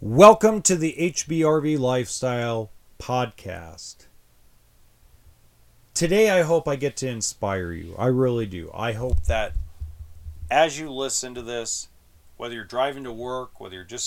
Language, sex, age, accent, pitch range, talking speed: English, male, 40-59, American, 80-125 Hz, 140 wpm